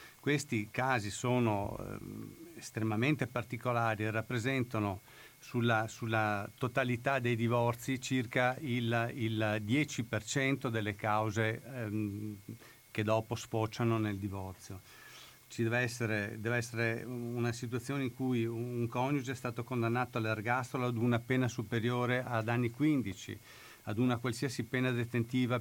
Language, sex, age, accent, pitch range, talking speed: Italian, male, 50-69, native, 110-125 Hz, 120 wpm